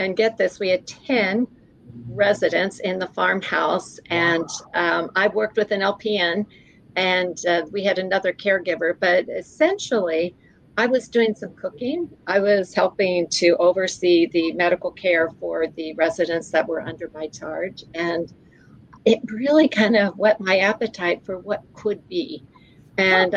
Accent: American